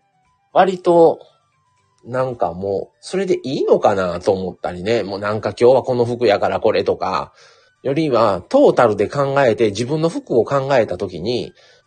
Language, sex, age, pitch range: Japanese, male, 30-49, 110-175 Hz